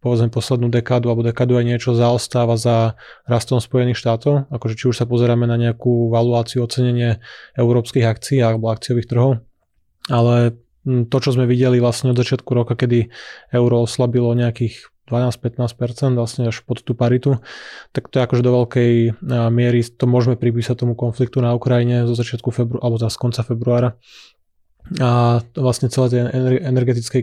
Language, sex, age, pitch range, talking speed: Slovak, male, 20-39, 120-125 Hz, 155 wpm